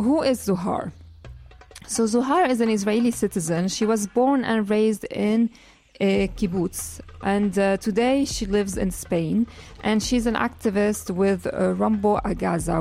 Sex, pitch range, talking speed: female, 190-225 Hz, 150 wpm